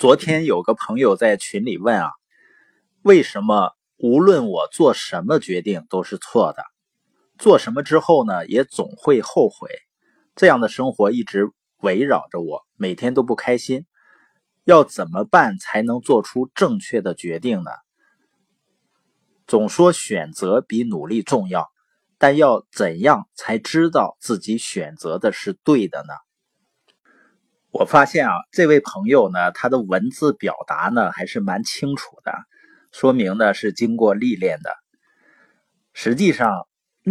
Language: Chinese